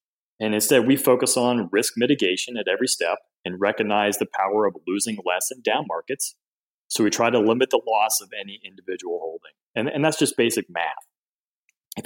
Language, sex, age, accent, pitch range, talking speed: English, male, 30-49, American, 105-155 Hz, 190 wpm